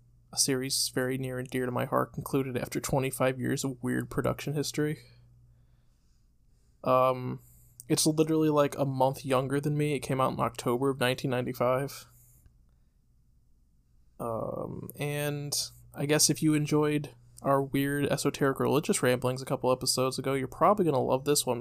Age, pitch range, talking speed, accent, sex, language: 20-39, 120-150 Hz, 155 wpm, American, male, English